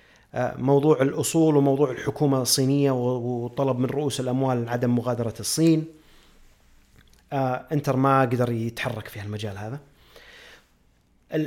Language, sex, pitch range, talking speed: Arabic, male, 125-165 Hz, 110 wpm